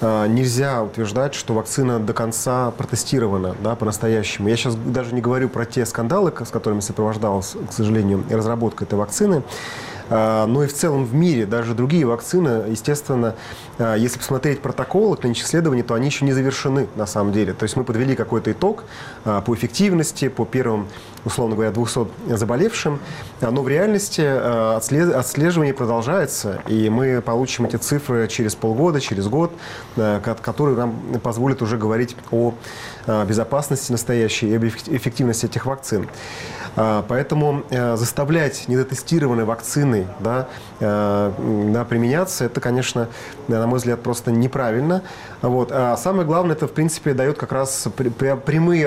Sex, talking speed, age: male, 135 wpm, 30-49